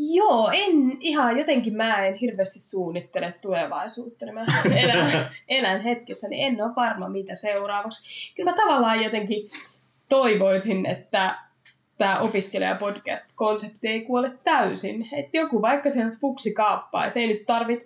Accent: native